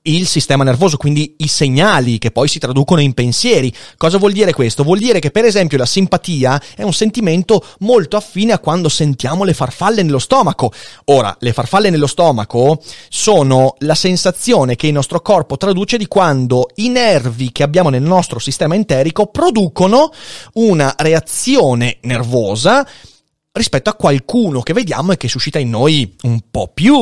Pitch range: 130-195 Hz